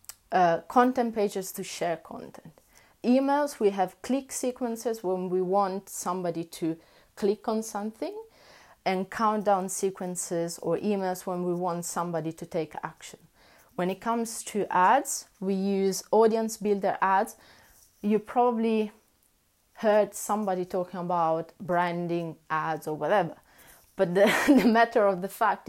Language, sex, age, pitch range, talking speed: English, female, 30-49, 175-215 Hz, 135 wpm